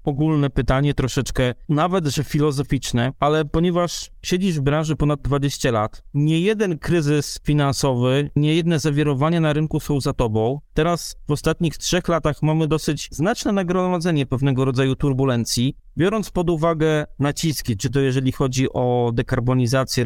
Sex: male